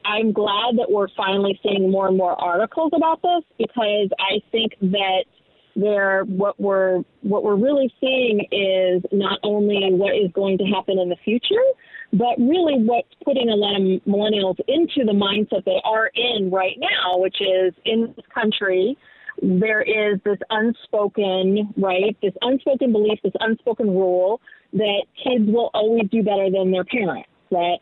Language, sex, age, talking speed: English, female, 40-59, 160 wpm